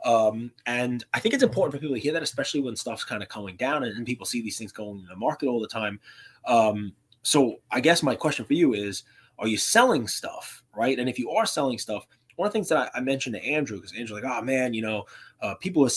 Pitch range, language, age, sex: 115-145 Hz, English, 20-39, male